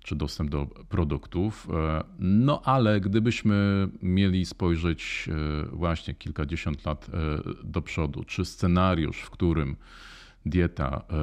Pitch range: 80-100 Hz